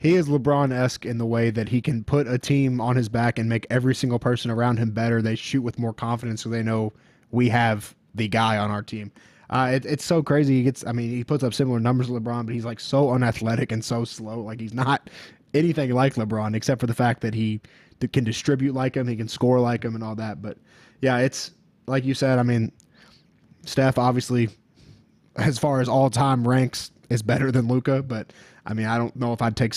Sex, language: male, English